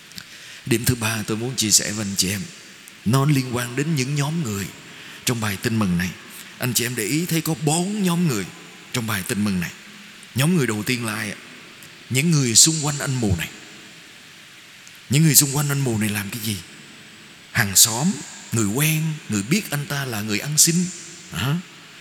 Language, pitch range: Vietnamese, 115-170 Hz